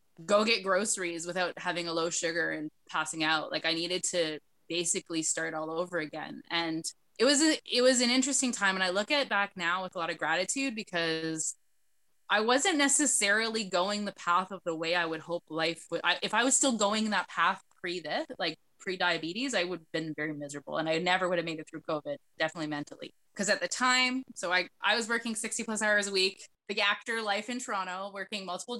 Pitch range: 165-215 Hz